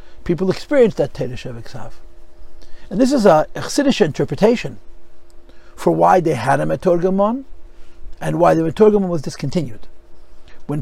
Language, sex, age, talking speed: English, male, 60-79, 130 wpm